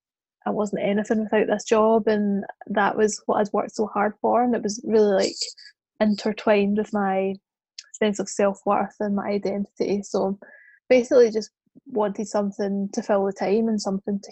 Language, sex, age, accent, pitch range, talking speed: English, female, 10-29, British, 205-240 Hz, 170 wpm